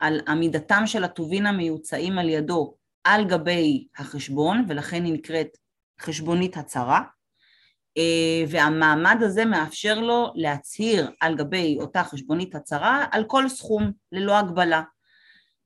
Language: Hebrew